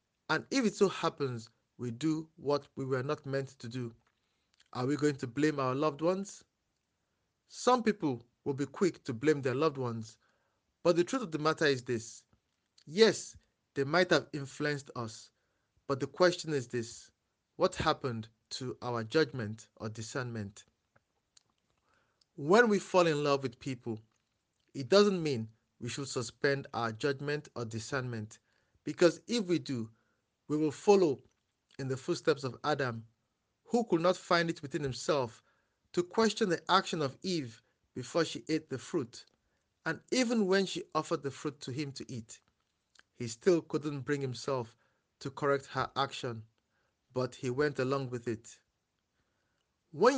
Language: English